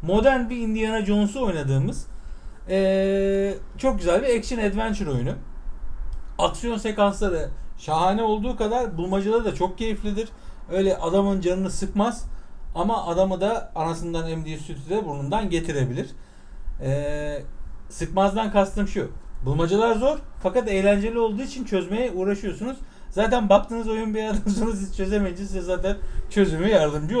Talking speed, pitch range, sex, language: 125 wpm, 155-220 Hz, male, Turkish